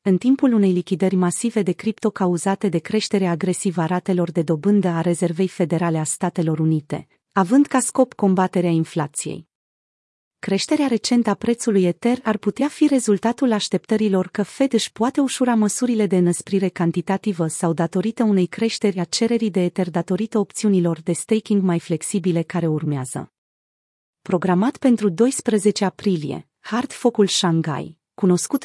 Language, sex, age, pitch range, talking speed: Romanian, female, 30-49, 175-225 Hz, 145 wpm